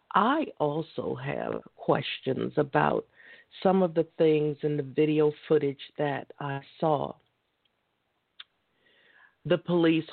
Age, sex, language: 50-69, female, English